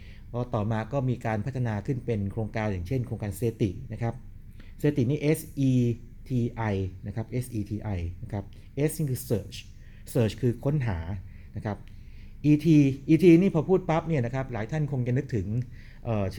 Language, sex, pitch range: Thai, male, 105-130 Hz